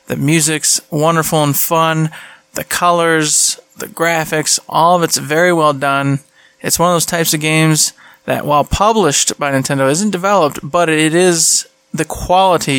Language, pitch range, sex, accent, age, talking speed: English, 145-175 Hz, male, American, 20-39, 160 wpm